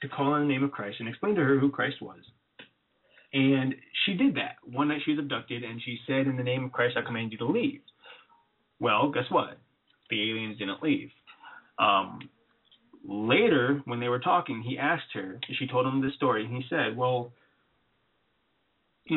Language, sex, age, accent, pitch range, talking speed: English, male, 30-49, American, 115-145 Hz, 195 wpm